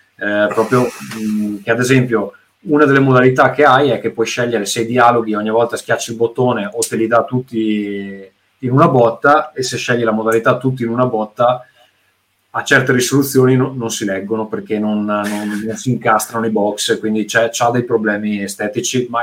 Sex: male